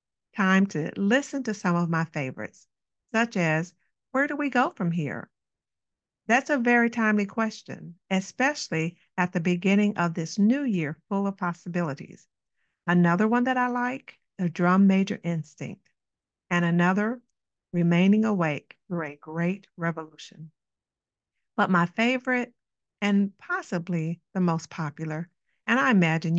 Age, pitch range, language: 50-69, 170-215 Hz, English